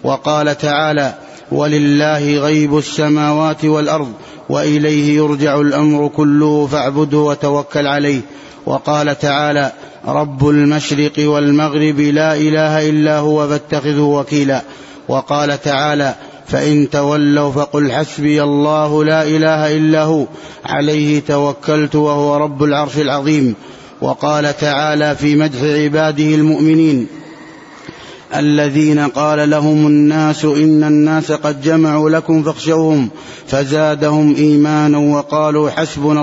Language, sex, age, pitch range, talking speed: Arabic, male, 30-49, 145-155 Hz, 100 wpm